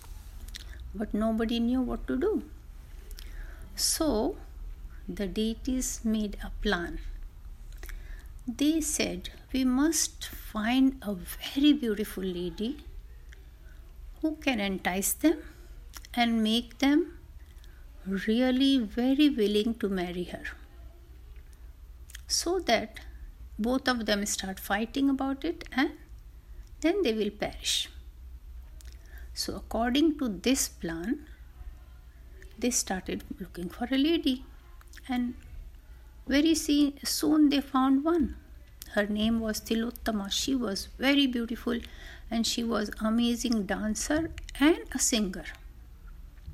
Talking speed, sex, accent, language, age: 105 wpm, female, native, Hindi, 60-79